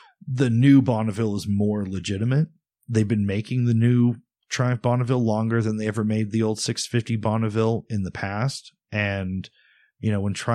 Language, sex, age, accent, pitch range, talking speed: English, male, 30-49, American, 100-125 Hz, 165 wpm